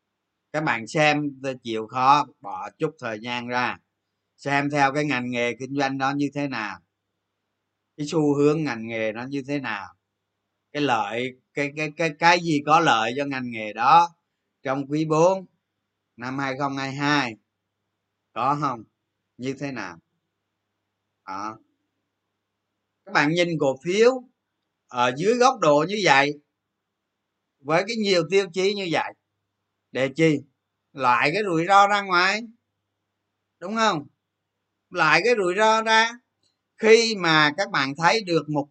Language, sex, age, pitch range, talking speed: Vietnamese, male, 20-39, 105-165 Hz, 145 wpm